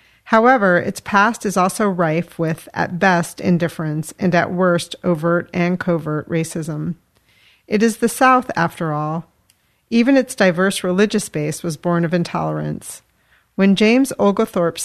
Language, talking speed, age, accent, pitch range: English, 140 wpm, 40-59, American, 165-200 Hz